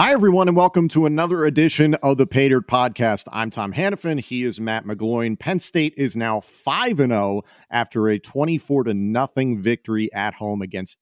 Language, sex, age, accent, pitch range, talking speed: English, male, 40-59, American, 100-140 Hz, 185 wpm